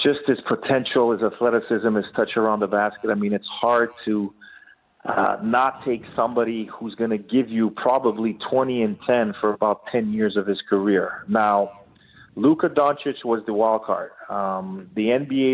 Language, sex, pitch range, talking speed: English, male, 110-125 Hz, 175 wpm